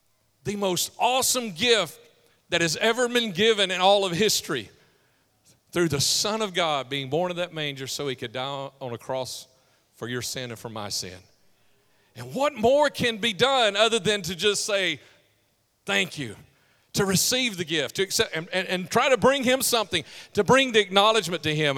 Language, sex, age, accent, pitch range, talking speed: English, male, 40-59, American, 140-205 Hz, 195 wpm